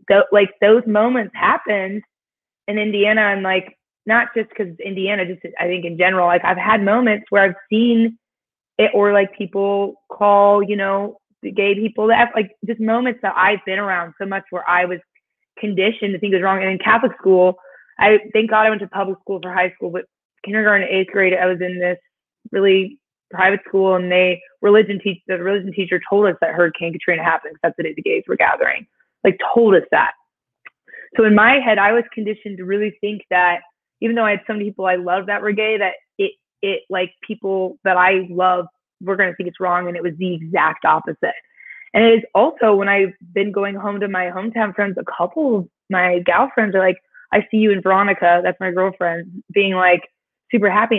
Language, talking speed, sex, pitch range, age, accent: English, 210 wpm, female, 185-215 Hz, 20-39, American